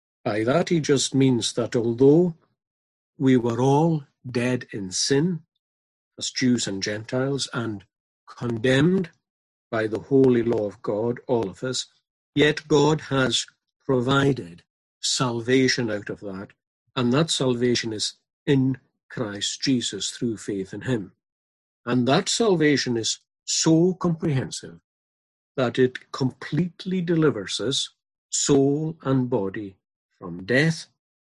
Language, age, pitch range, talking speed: English, 50-69, 105-150 Hz, 120 wpm